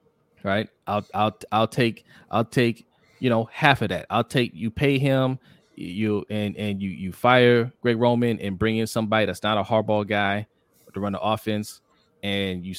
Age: 20-39